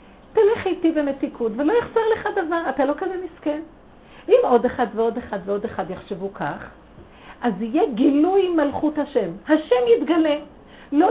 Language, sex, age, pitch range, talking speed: Hebrew, female, 50-69, 245-355 Hz, 150 wpm